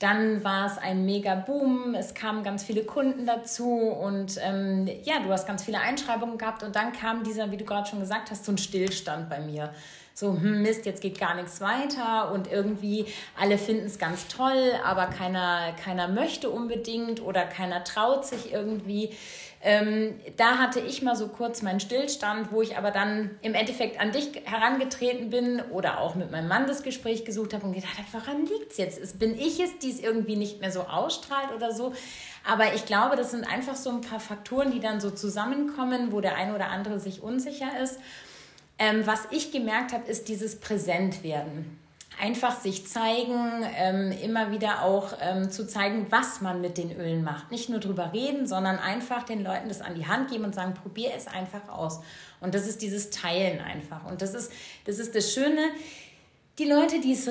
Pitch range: 195-245 Hz